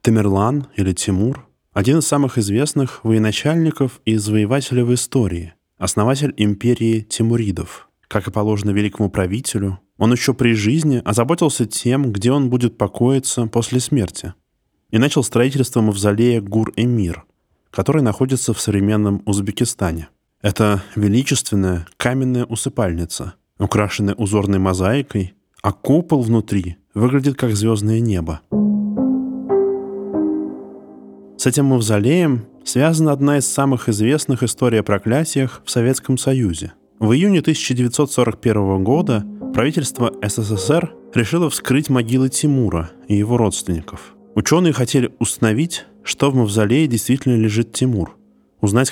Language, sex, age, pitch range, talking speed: Russian, male, 20-39, 100-130 Hz, 115 wpm